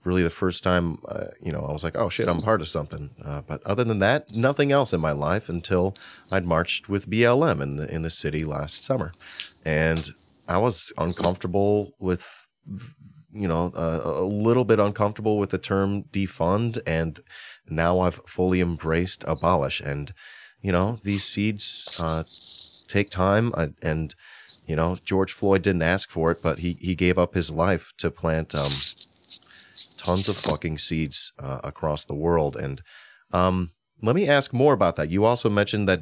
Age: 30-49